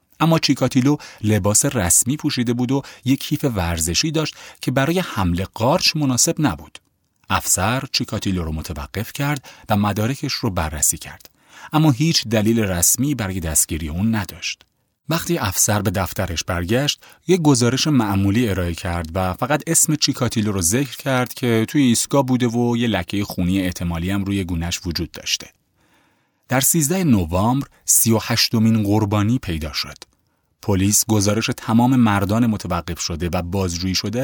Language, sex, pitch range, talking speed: Persian, male, 90-130 Hz, 145 wpm